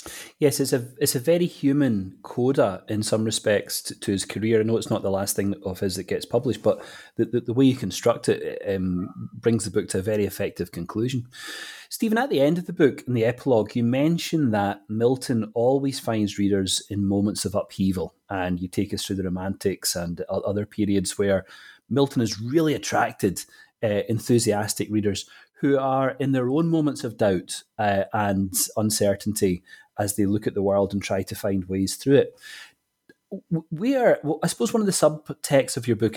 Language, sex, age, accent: English, male, 30-49, British